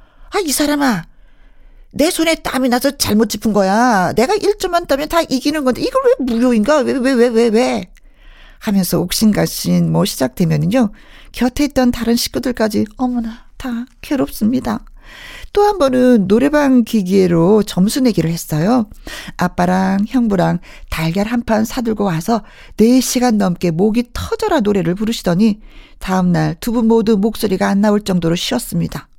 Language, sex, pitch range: Korean, female, 195-260 Hz